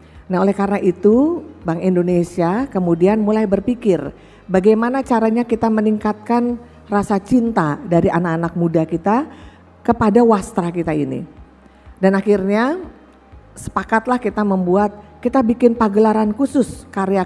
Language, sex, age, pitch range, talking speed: Indonesian, female, 40-59, 180-230 Hz, 115 wpm